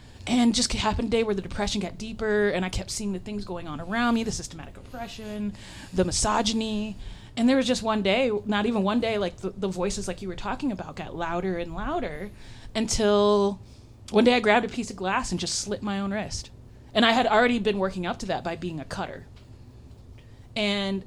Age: 20-39